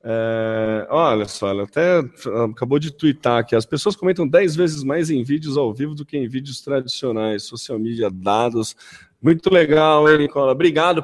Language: Portuguese